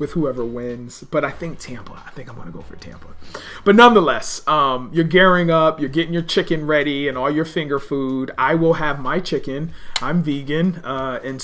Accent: American